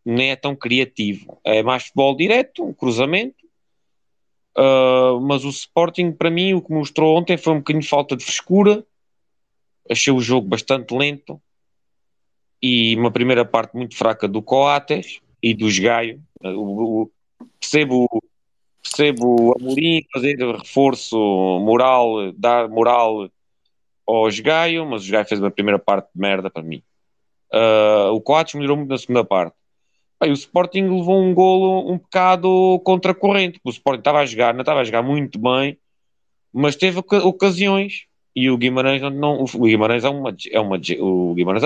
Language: Portuguese